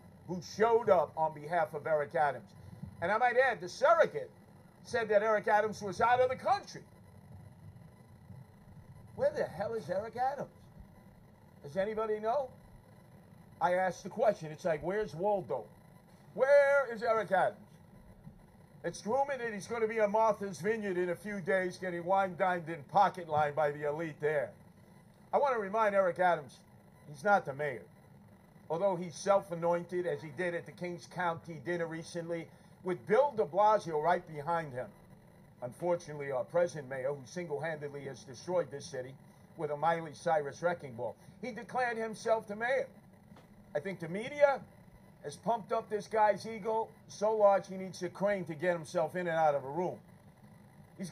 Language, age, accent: English, 50-69, American